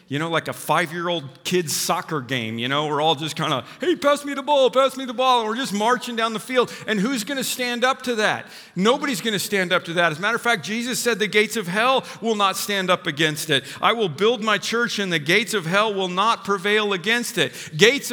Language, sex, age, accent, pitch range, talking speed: English, male, 50-69, American, 160-225 Hz, 270 wpm